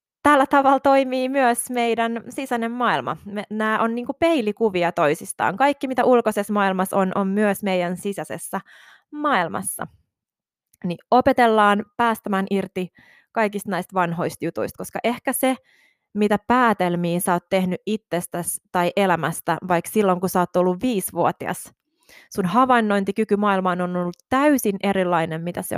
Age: 20-39